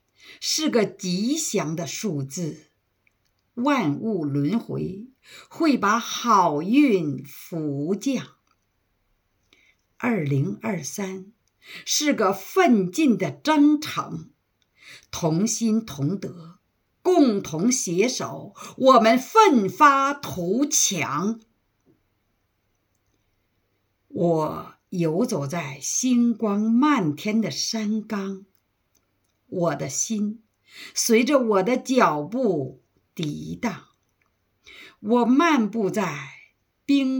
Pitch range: 160-265 Hz